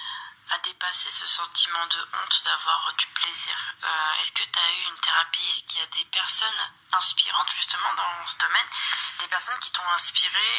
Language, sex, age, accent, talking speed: French, female, 20-39, French, 185 wpm